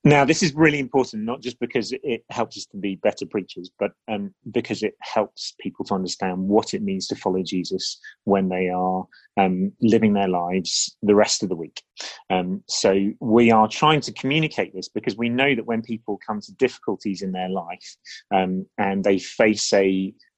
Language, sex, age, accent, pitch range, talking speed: English, male, 30-49, British, 95-115 Hz, 195 wpm